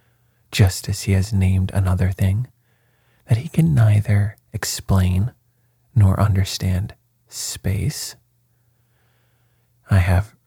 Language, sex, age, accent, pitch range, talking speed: English, male, 30-49, American, 95-120 Hz, 95 wpm